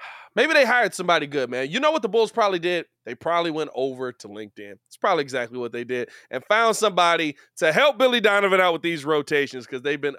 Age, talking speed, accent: 20-39, 230 wpm, American